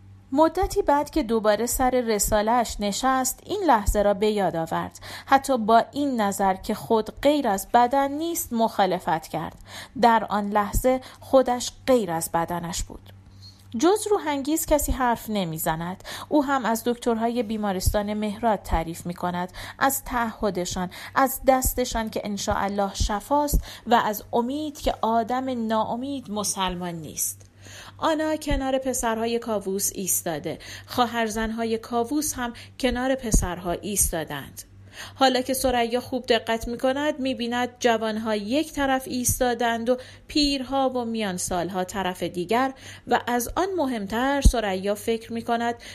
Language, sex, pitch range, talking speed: Persian, female, 195-260 Hz, 130 wpm